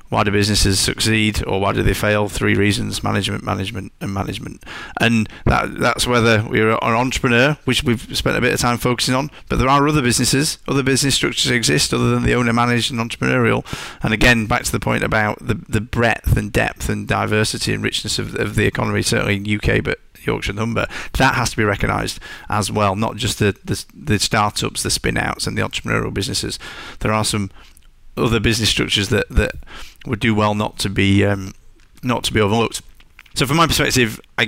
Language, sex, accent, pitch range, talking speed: English, male, British, 105-120 Hz, 205 wpm